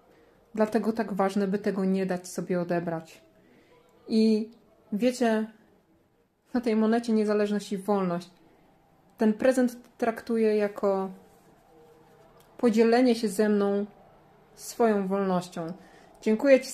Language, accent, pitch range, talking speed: Polish, native, 195-230 Hz, 105 wpm